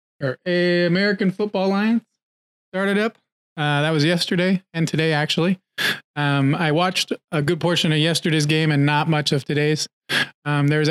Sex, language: male, English